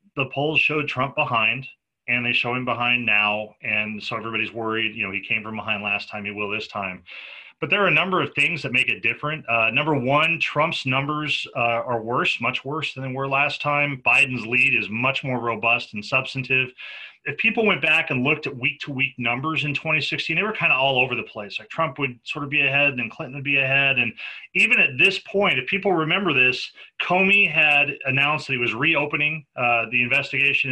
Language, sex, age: English, male, 30-49